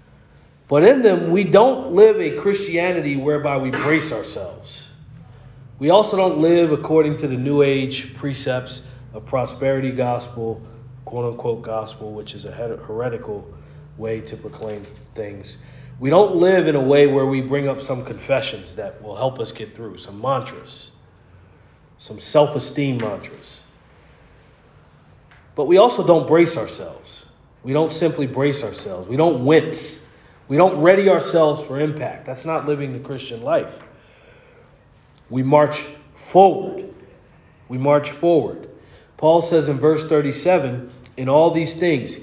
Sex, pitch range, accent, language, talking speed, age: male, 125-170 Hz, American, English, 140 wpm, 40-59